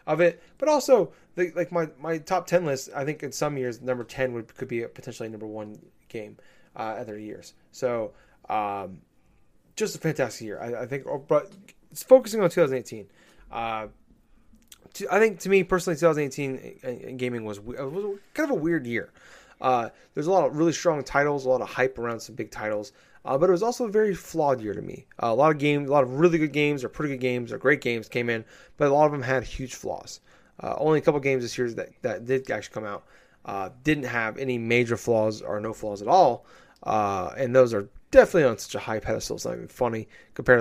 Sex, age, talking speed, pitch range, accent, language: male, 20-39, 230 wpm, 120-165 Hz, American, English